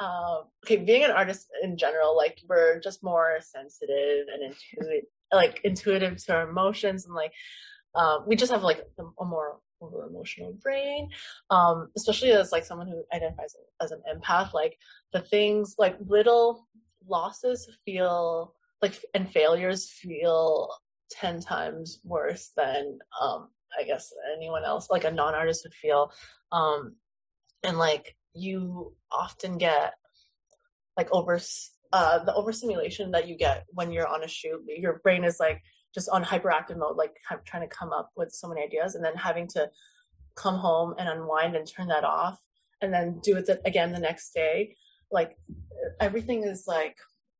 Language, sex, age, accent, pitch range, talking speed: English, female, 20-39, American, 160-205 Hz, 165 wpm